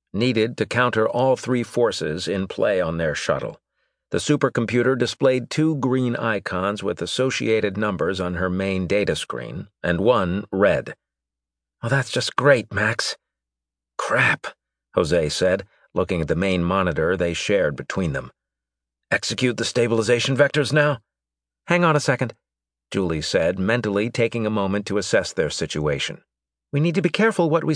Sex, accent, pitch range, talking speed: male, American, 85-130 Hz, 150 wpm